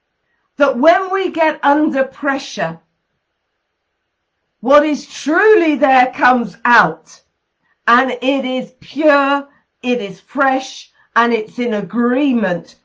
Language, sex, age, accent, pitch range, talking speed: English, female, 50-69, British, 230-310 Hz, 105 wpm